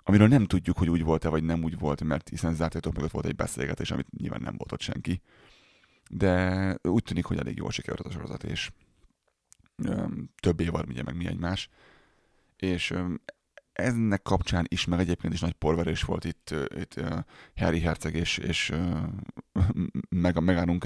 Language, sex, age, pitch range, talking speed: Hungarian, male, 30-49, 80-95 Hz, 175 wpm